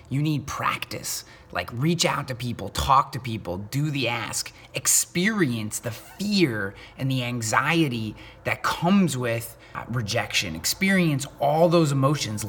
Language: English